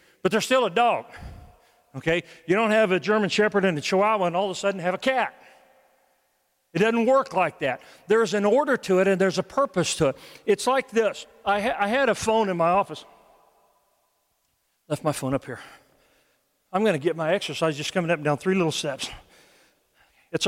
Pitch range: 170-225 Hz